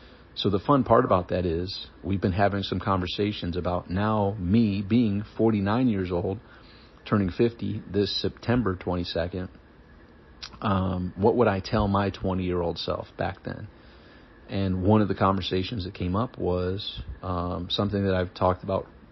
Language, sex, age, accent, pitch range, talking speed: English, male, 40-59, American, 90-100 Hz, 160 wpm